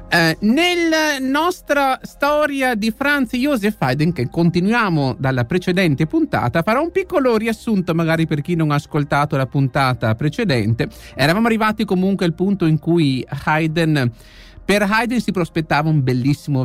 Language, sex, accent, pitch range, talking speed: Italian, male, native, 145-225 Hz, 145 wpm